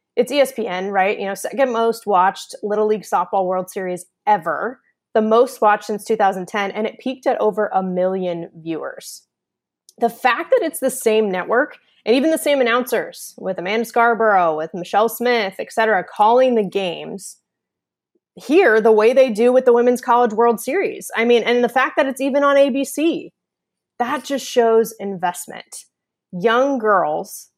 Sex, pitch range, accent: female, 190-240 Hz, American